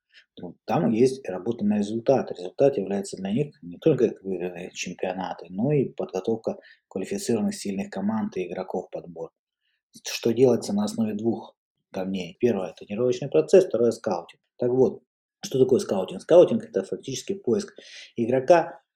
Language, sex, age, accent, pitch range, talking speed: Russian, male, 20-39, native, 105-130 Hz, 140 wpm